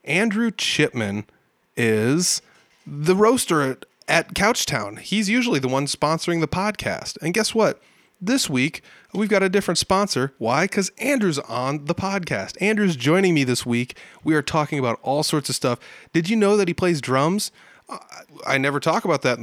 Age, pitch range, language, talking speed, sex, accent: 30-49, 115-170 Hz, English, 175 wpm, male, American